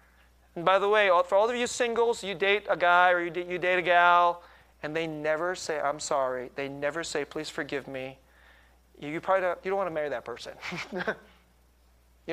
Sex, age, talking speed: male, 30-49, 200 wpm